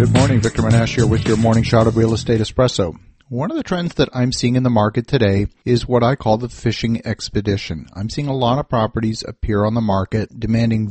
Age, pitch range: 50-69, 105-120 Hz